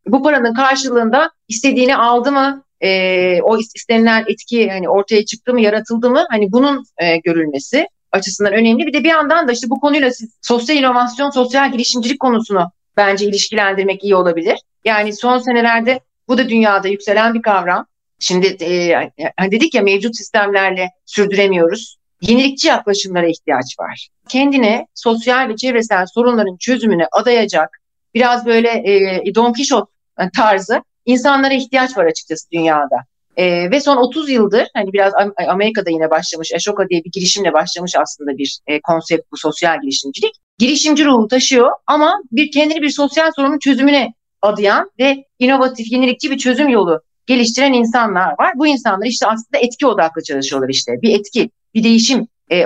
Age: 40-59